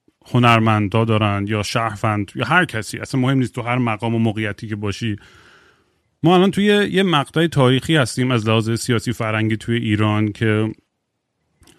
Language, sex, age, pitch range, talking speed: Persian, male, 30-49, 105-125 Hz, 155 wpm